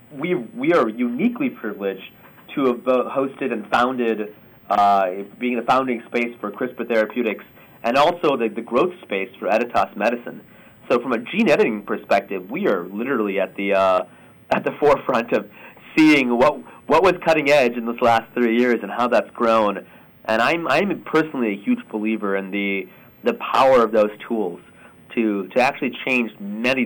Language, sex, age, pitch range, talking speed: English, male, 30-49, 110-140 Hz, 175 wpm